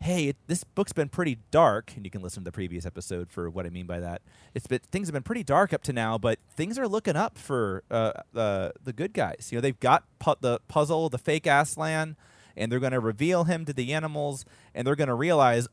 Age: 30-49